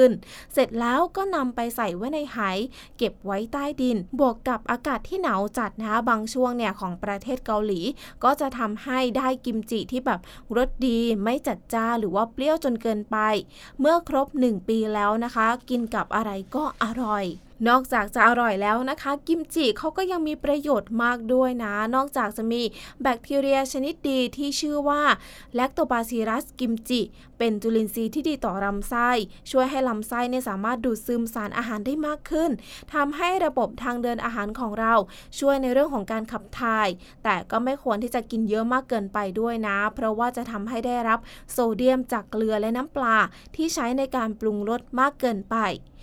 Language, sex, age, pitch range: English, female, 20-39, 220-260 Hz